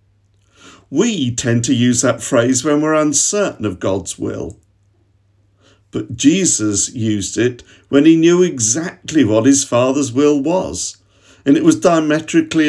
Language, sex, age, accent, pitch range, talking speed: English, male, 50-69, British, 100-140 Hz, 135 wpm